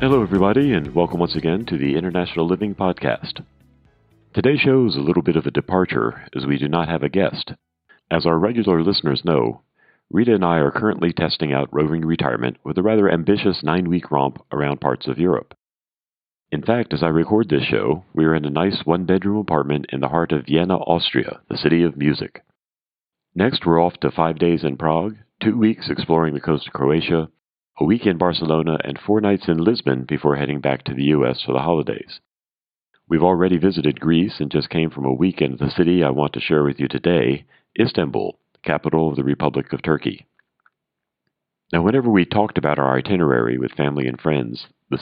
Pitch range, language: 70-90 Hz, English